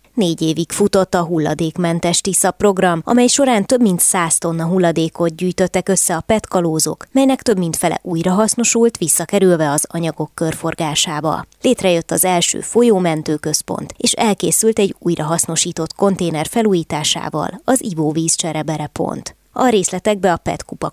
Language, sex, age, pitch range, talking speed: Hungarian, female, 20-39, 155-195 Hz, 130 wpm